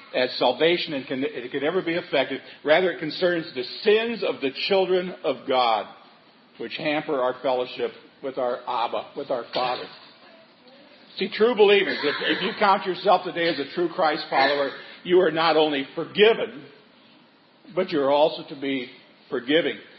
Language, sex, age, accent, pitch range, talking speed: English, male, 50-69, American, 140-195 Hz, 160 wpm